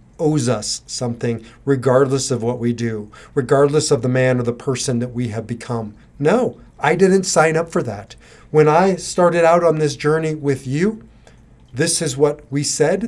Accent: American